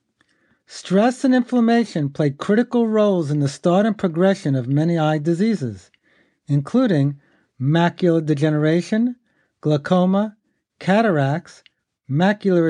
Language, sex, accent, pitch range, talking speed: English, male, American, 150-215 Hz, 100 wpm